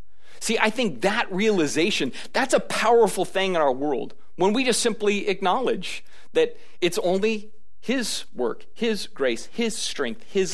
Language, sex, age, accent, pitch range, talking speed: English, male, 40-59, American, 125-190 Hz, 155 wpm